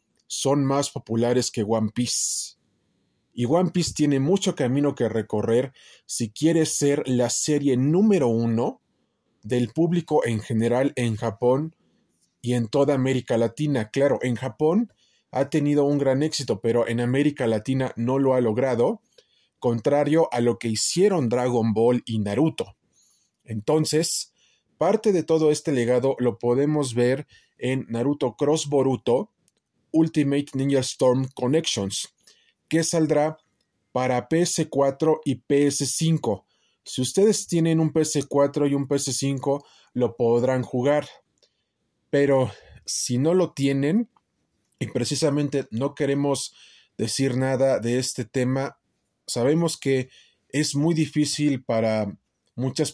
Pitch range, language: 120-150 Hz, Spanish